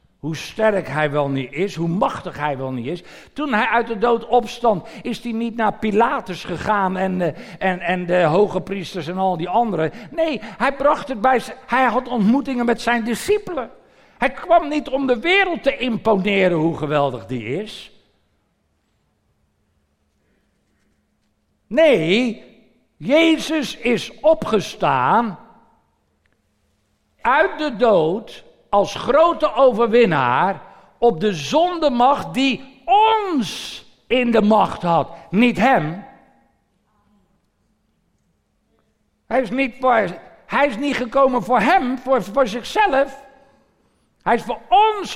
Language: Dutch